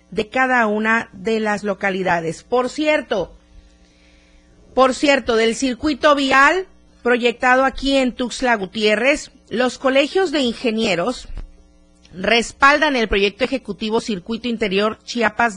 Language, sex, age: Spanish, female, 40-59